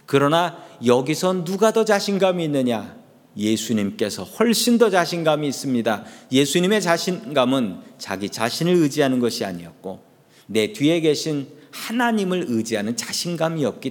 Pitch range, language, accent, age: 140-200 Hz, Korean, native, 40-59